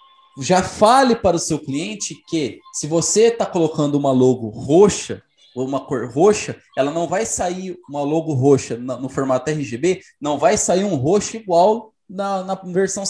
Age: 20-39